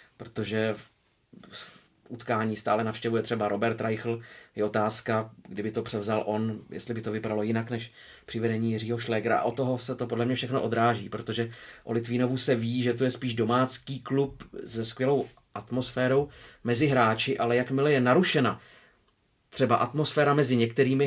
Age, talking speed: 30-49, 155 wpm